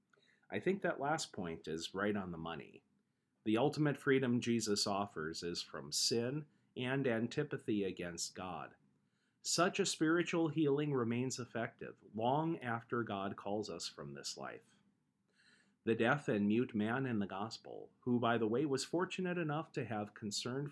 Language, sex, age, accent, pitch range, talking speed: English, male, 40-59, American, 105-135 Hz, 155 wpm